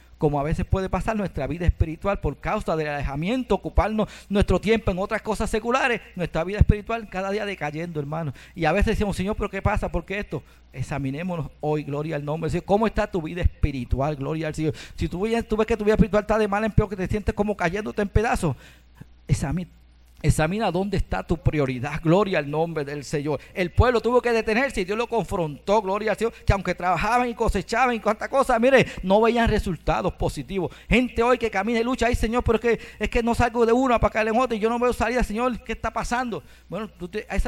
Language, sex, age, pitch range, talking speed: Spanish, male, 50-69, 160-230 Hz, 225 wpm